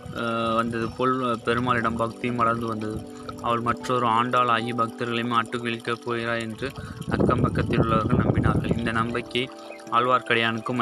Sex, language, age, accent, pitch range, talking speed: male, Tamil, 20-39, native, 115-125 Hz, 115 wpm